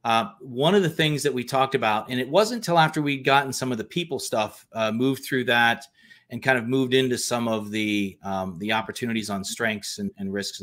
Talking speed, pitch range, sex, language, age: 230 wpm, 105-140 Hz, male, English, 30-49